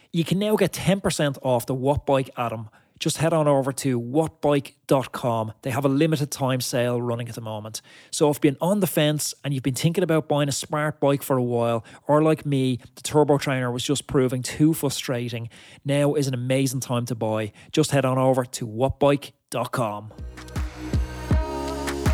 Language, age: English, 20-39